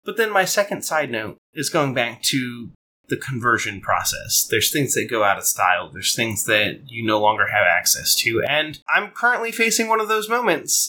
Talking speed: 205 wpm